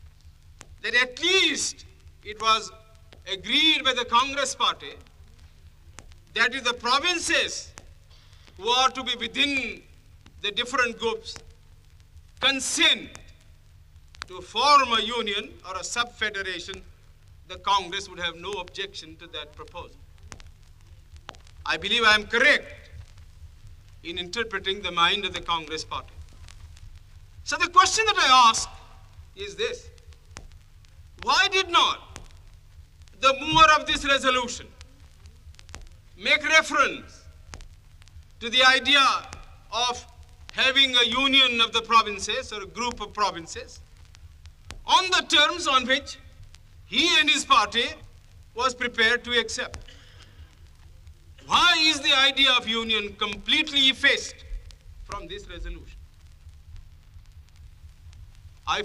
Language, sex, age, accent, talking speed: Hindi, male, 50-69, native, 110 wpm